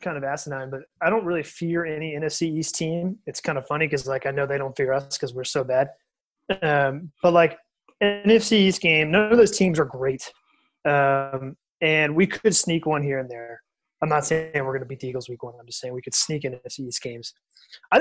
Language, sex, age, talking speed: English, male, 20-39, 235 wpm